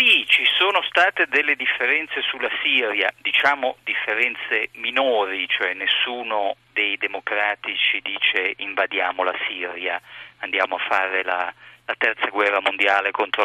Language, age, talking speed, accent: Italian, 40-59, 125 wpm, native